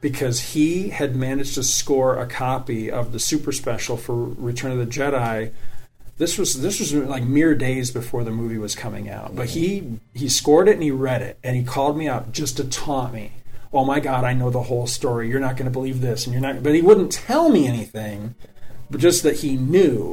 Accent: American